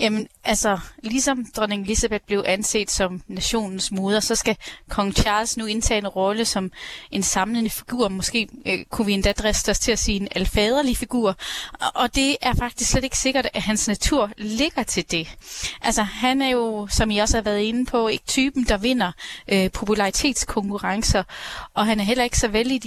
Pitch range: 195-235 Hz